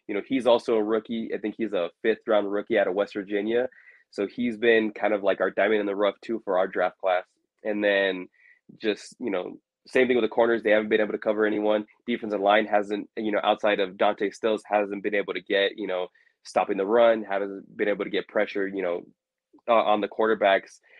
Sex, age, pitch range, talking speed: male, 20-39, 100-115 Hz, 230 wpm